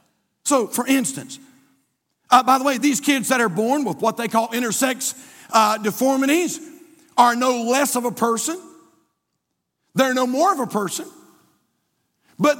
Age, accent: 50-69, American